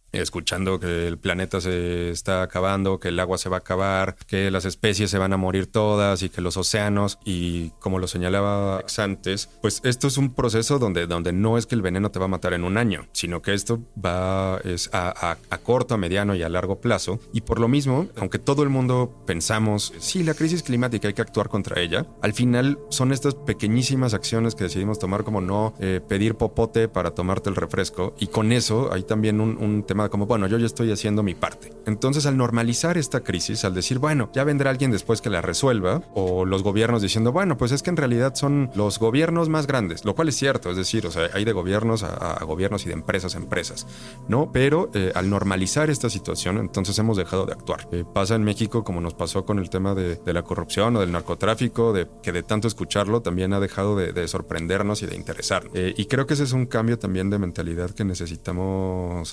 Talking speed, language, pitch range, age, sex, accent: 225 wpm, Spanish, 95-115 Hz, 30-49, male, Mexican